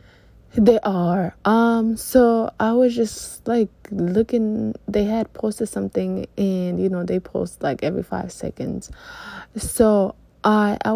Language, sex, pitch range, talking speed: English, female, 185-230 Hz, 135 wpm